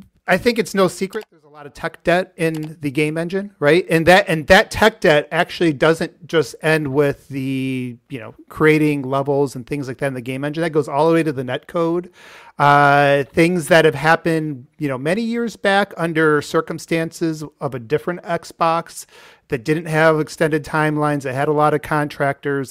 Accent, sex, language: American, male, English